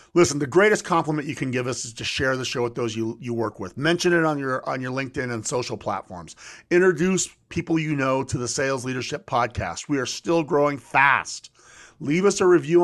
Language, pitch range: English, 120-165 Hz